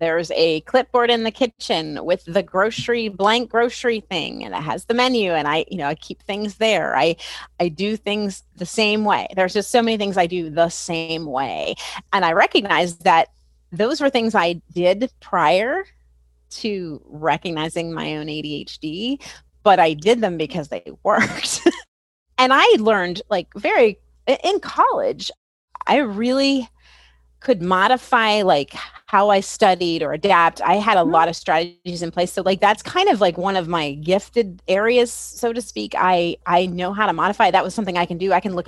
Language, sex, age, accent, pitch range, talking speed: English, female, 30-49, American, 165-225 Hz, 185 wpm